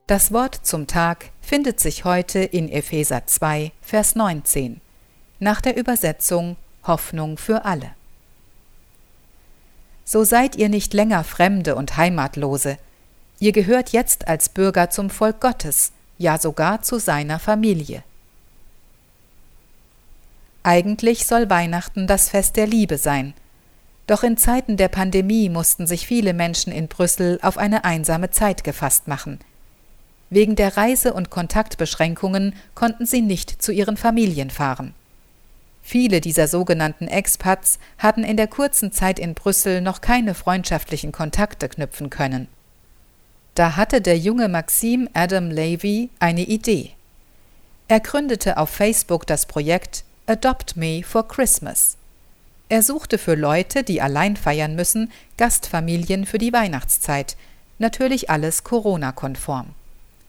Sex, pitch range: female, 160-220 Hz